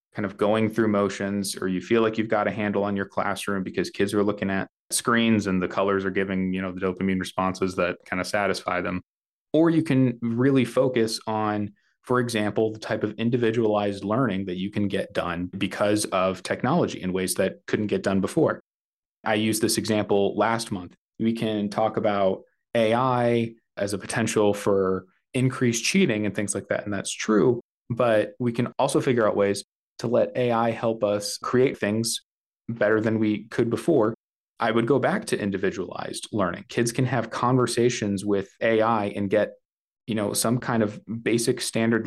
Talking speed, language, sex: 185 wpm, English, male